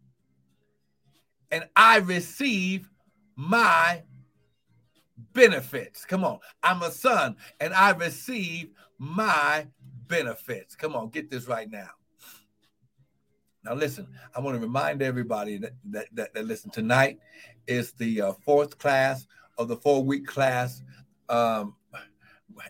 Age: 60-79